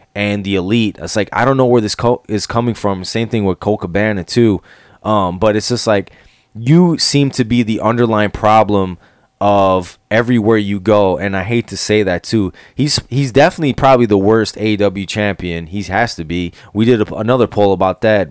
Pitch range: 95-115 Hz